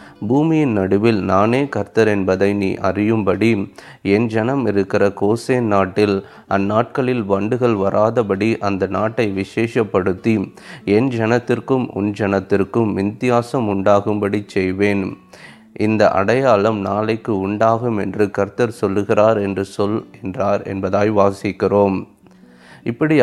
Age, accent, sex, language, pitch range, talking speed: 30-49, Indian, male, English, 100-120 Hz, 95 wpm